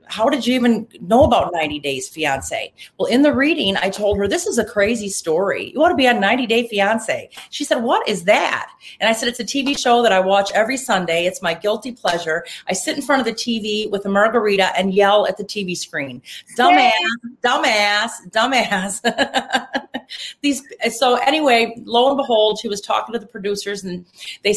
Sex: female